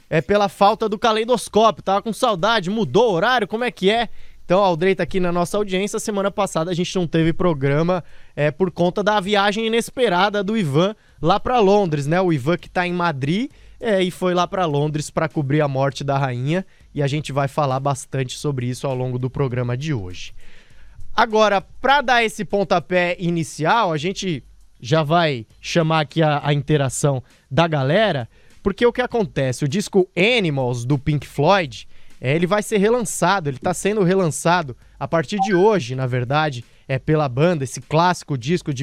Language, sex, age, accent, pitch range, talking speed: Portuguese, male, 20-39, Brazilian, 145-195 Hz, 190 wpm